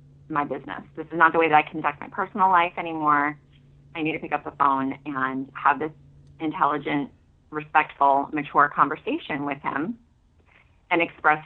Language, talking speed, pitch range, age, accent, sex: English, 170 wpm, 140-170 Hz, 30-49, American, female